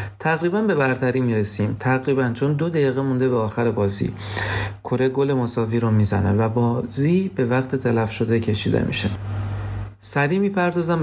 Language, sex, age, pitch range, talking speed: Persian, male, 40-59, 110-140 Hz, 150 wpm